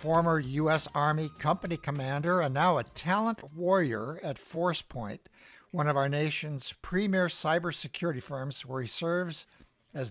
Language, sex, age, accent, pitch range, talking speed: English, male, 60-79, American, 140-175 Hz, 135 wpm